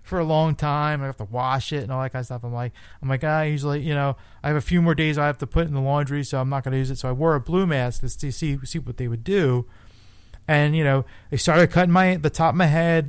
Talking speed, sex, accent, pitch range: 315 wpm, male, American, 130-165 Hz